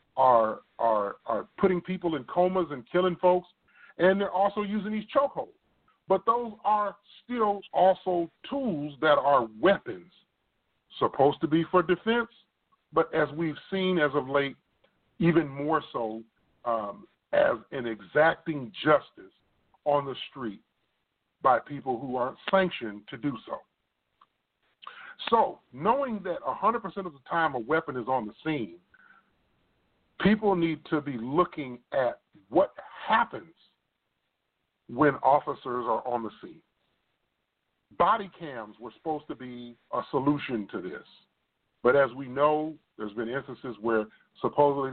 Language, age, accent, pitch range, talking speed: English, 40-59, American, 130-190 Hz, 140 wpm